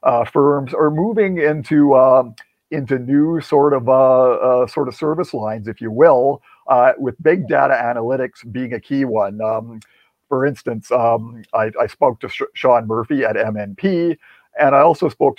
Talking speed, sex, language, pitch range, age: 170 wpm, male, English, 120-155 Hz, 50-69